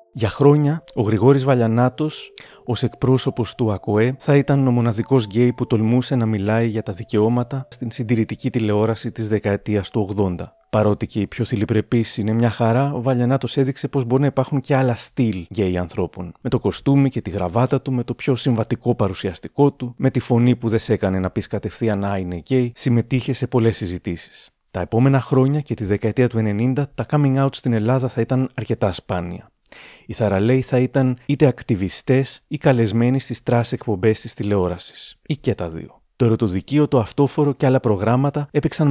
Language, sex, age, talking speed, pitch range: Greek, male, 30-49, 185 wpm, 105-130 Hz